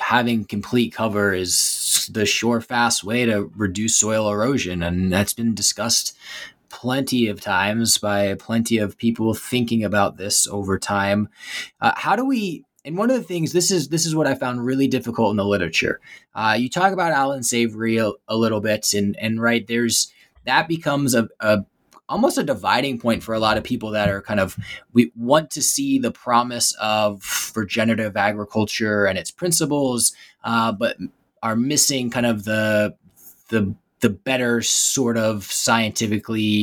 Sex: male